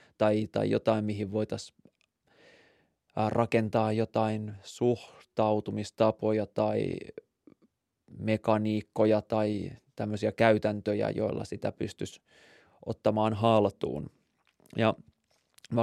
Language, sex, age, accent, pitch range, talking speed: Finnish, male, 20-39, native, 105-115 Hz, 75 wpm